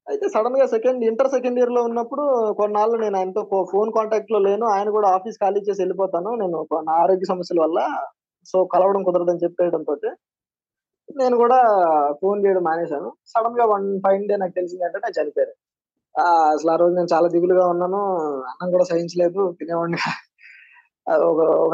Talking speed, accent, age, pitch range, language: 160 wpm, native, 20-39, 170-210 Hz, Telugu